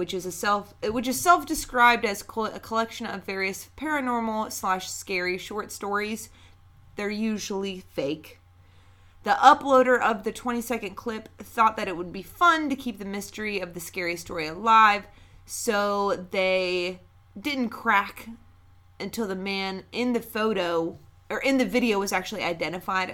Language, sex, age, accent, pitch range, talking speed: English, female, 30-49, American, 165-220 Hz, 150 wpm